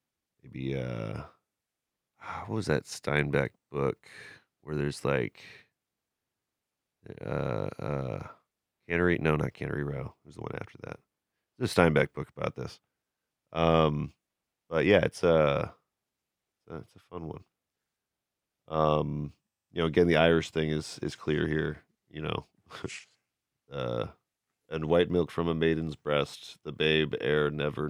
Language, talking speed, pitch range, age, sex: English, 140 wpm, 75-85 Hz, 30-49, male